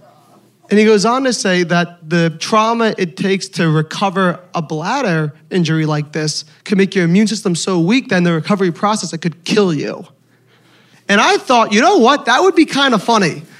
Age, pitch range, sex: 30-49, 195-325 Hz, male